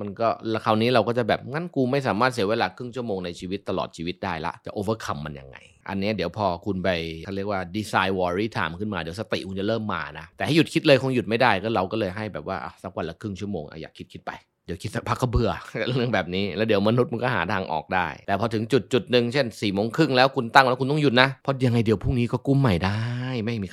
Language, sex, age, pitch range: Thai, male, 20-39, 90-120 Hz